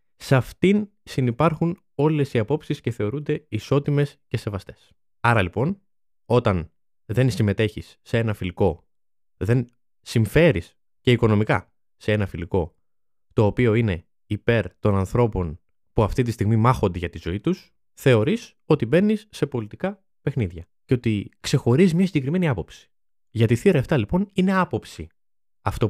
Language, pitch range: Greek, 100-155 Hz